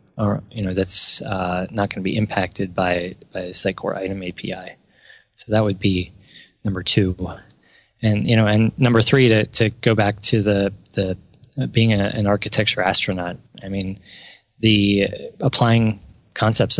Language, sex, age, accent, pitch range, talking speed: English, male, 20-39, American, 100-115 Hz, 170 wpm